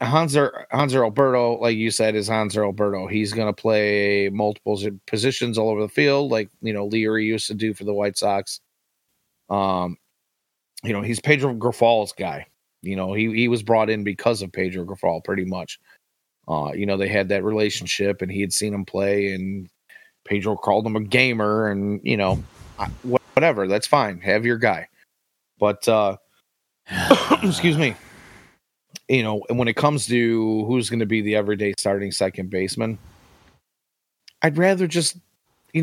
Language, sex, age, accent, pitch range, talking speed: English, male, 30-49, American, 100-125 Hz, 175 wpm